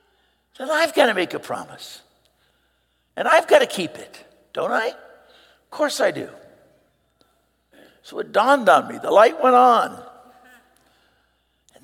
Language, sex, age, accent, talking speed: English, male, 60-79, American, 145 wpm